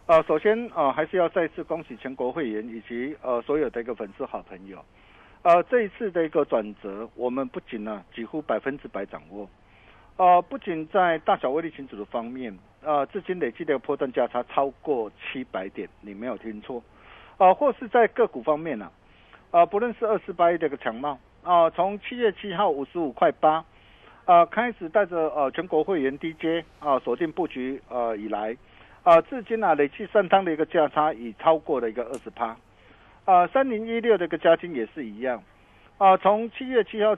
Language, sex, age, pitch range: Chinese, male, 50-69, 125-195 Hz